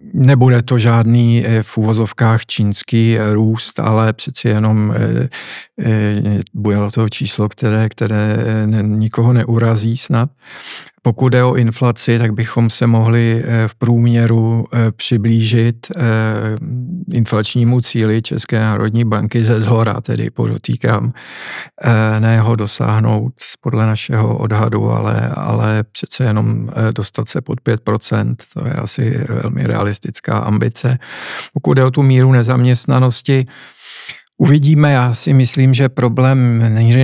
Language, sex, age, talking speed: Czech, male, 50-69, 115 wpm